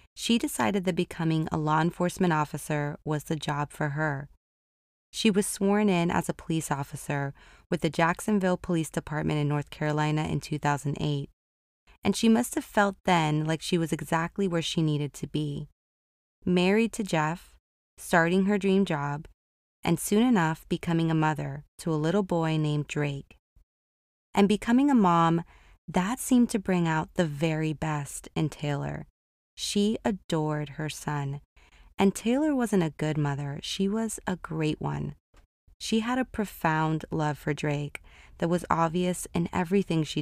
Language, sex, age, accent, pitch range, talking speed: English, female, 20-39, American, 145-185 Hz, 160 wpm